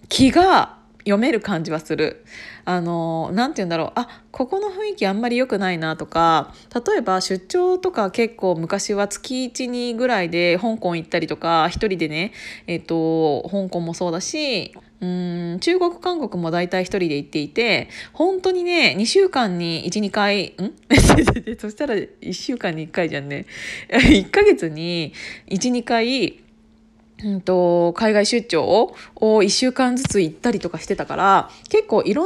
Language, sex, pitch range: Japanese, female, 175-255 Hz